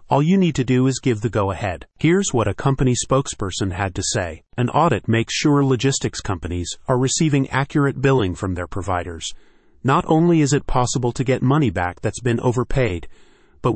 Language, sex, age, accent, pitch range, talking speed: English, male, 30-49, American, 105-140 Hz, 190 wpm